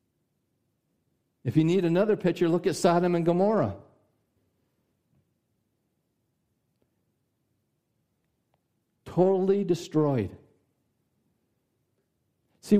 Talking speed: 60 wpm